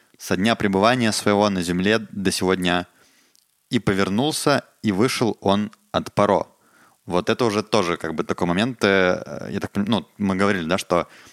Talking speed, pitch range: 160 wpm, 95-115 Hz